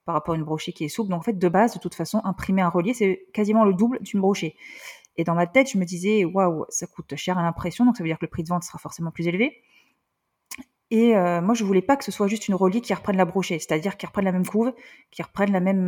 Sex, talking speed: female, 295 wpm